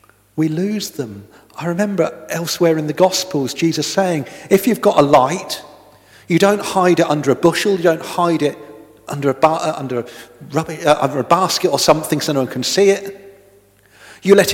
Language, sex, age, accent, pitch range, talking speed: English, male, 40-59, British, 115-165 Hz, 180 wpm